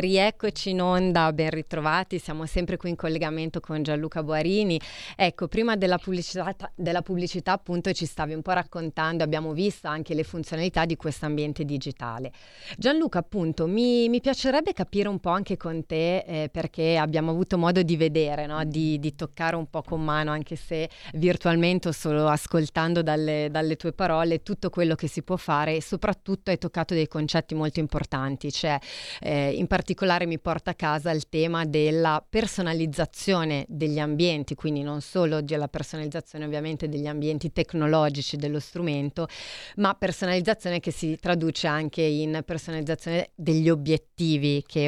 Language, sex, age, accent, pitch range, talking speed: Italian, female, 30-49, native, 155-180 Hz, 160 wpm